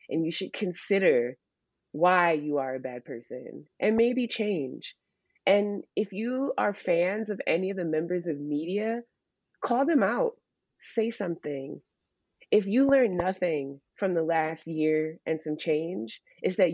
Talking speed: 155 wpm